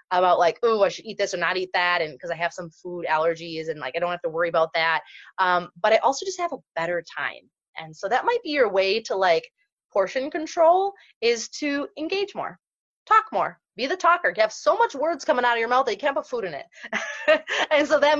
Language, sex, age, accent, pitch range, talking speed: English, female, 20-39, American, 180-300 Hz, 250 wpm